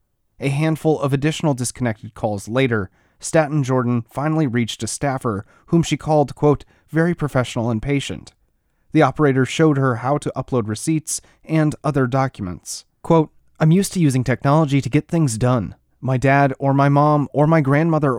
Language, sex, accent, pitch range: English, male, American, 125-150 Hz